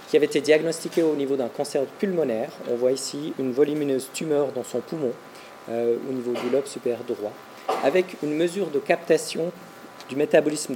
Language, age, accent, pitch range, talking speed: French, 40-59, French, 130-160 Hz, 180 wpm